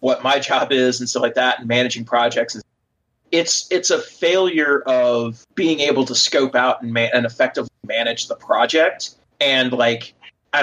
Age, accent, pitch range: 30-49, American, 125-155 Hz